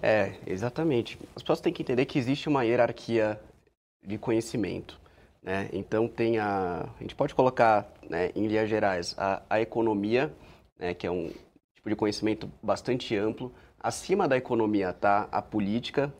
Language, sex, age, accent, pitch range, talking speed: Portuguese, male, 20-39, Brazilian, 110-150 Hz, 160 wpm